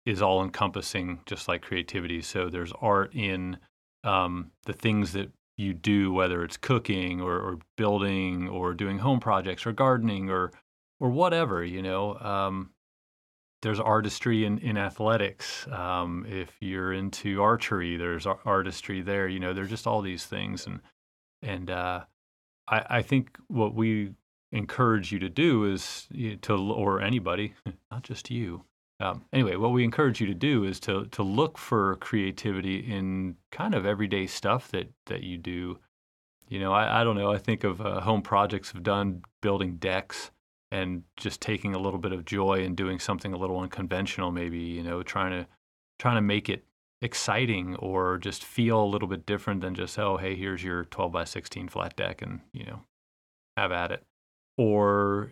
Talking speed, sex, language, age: 175 wpm, male, English, 30-49